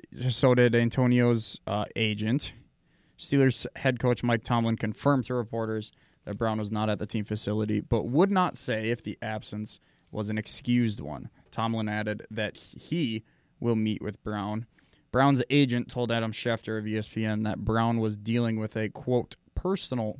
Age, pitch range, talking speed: 20-39, 110-125 Hz, 165 wpm